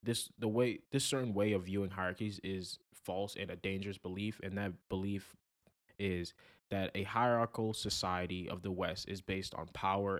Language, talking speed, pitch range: English, 175 wpm, 95-110 Hz